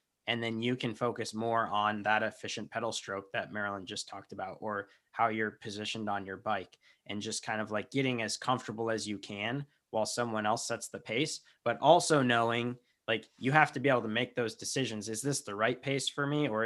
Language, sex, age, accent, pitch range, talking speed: English, male, 20-39, American, 100-120 Hz, 220 wpm